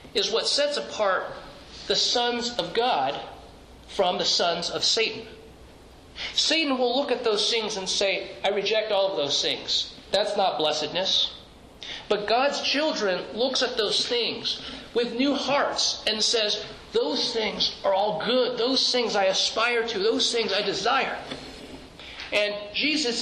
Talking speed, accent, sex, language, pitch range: 150 wpm, American, male, English, 200-240 Hz